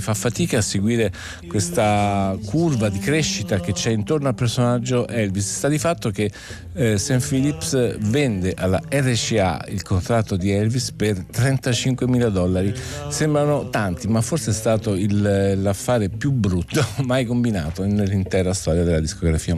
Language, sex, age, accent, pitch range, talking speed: Italian, male, 50-69, native, 100-130 Hz, 145 wpm